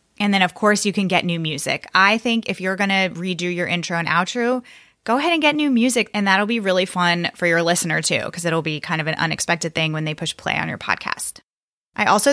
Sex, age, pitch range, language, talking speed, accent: female, 20-39, 170-220 Hz, English, 255 wpm, American